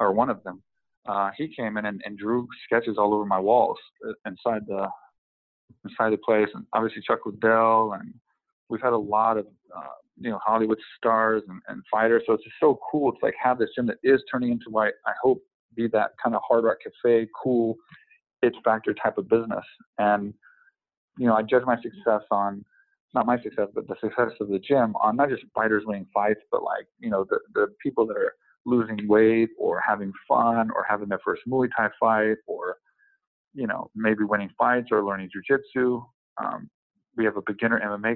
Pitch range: 105-120 Hz